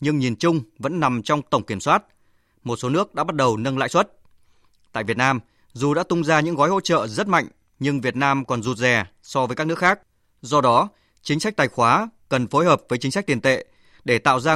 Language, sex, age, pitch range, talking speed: Vietnamese, male, 20-39, 120-155 Hz, 245 wpm